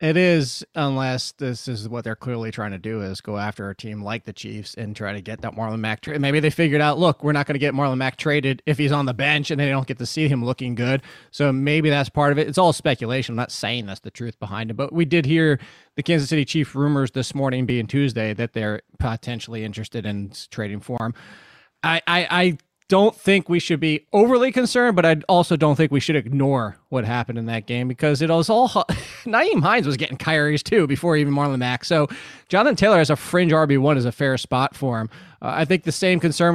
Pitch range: 125-160 Hz